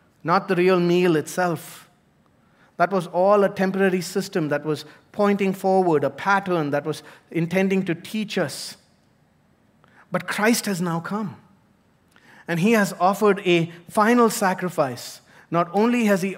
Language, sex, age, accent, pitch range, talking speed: English, male, 30-49, Indian, 150-195 Hz, 145 wpm